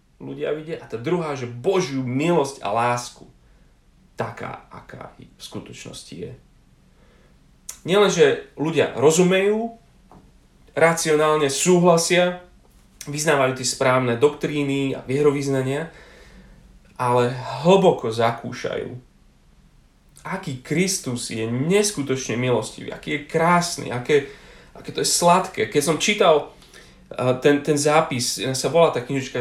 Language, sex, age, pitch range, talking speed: Slovak, male, 40-59, 120-165 Hz, 110 wpm